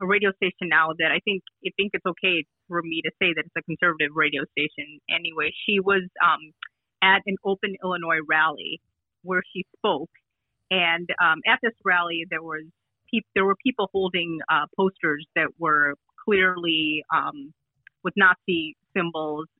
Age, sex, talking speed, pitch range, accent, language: 30-49, female, 165 wpm, 155-190 Hz, American, English